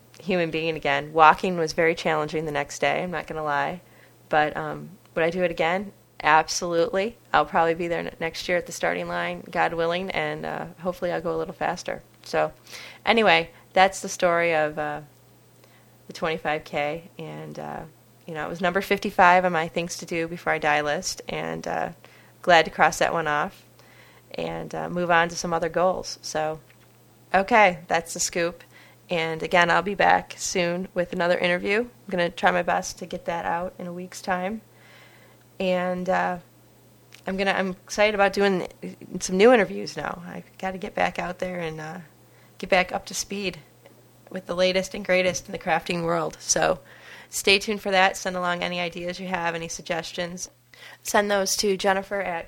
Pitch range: 155-190 Hz